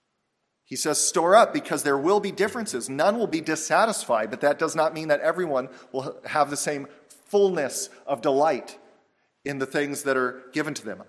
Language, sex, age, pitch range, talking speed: English, male, 40-59, 130-180 Hz, 190 wpm